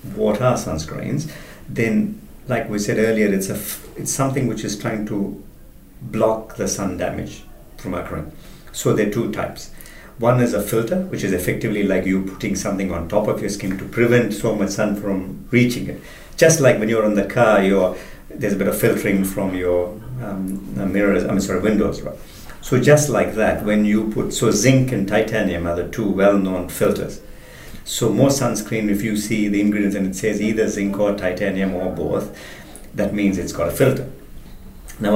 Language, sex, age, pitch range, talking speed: English, male, 50-69, 90-110 Hz, 195 wpm